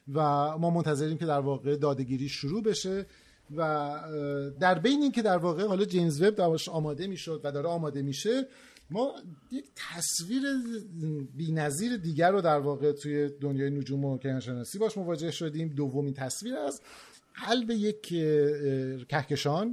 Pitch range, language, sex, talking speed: 140-175 Hz, Persian, male, 150 wpm